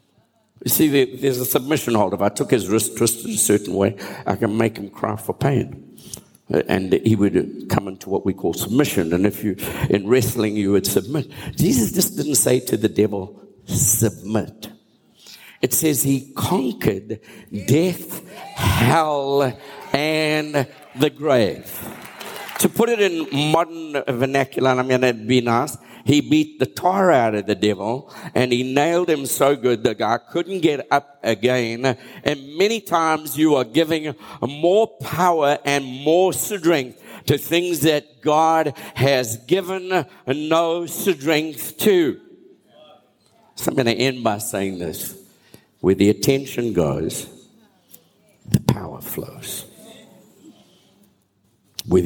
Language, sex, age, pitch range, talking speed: English, male, 60-79, 110-160 Hz, 145 wpm